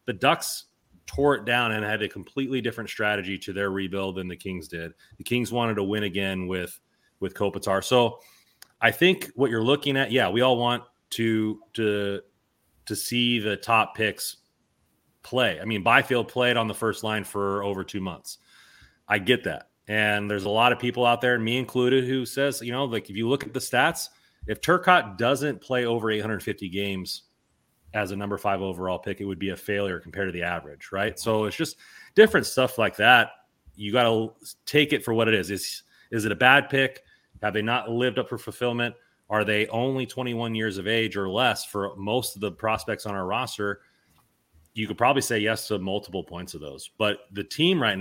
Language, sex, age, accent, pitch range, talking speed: English, male, 30-49, American, 100-120 Hz, 205 wpm